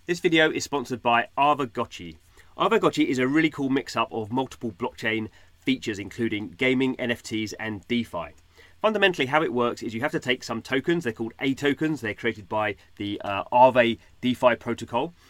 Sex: male